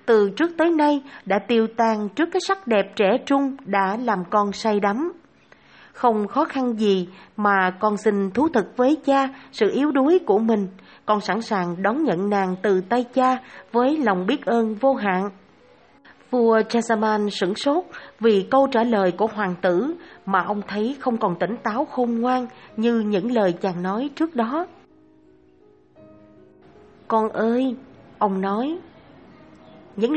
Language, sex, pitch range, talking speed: Vietnamese, female, 195-260 Hz, 160 wpm